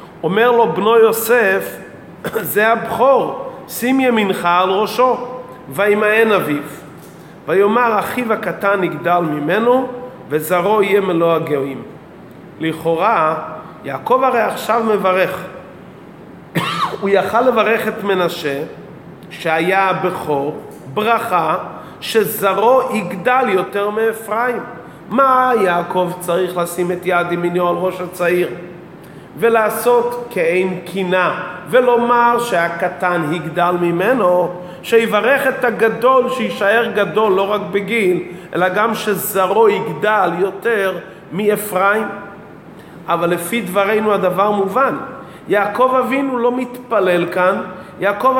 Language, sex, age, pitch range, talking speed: Hebrew, male, 40-59, 175-225 Hz, 100 wpm